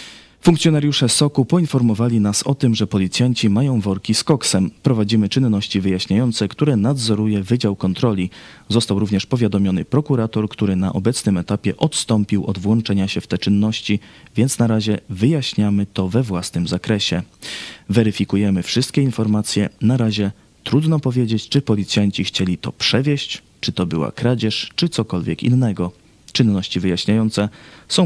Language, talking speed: Polish, 135 wpm